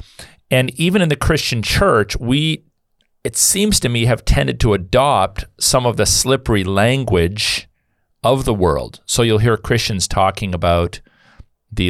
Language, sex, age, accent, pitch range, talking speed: English, male, 40-59, American, 85-115 Hz, 150 wpm